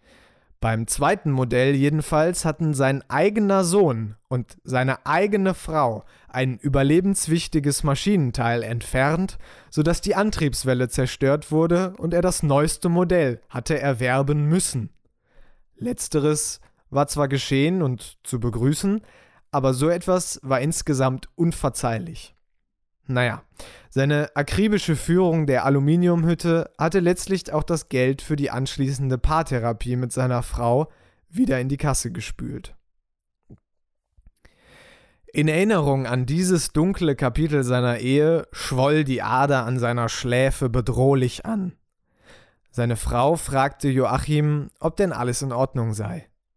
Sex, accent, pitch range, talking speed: male, German, 125-160 Hz, 115 wpm